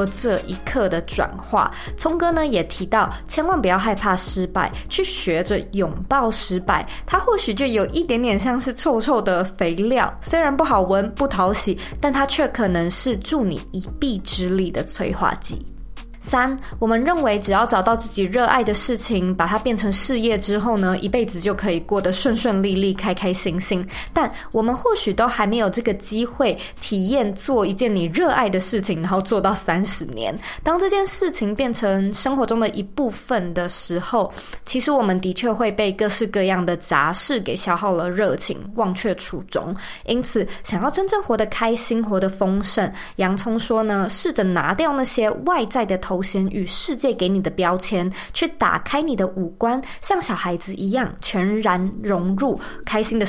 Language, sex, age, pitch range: Chinese, female, 20-39, 190-245 Hz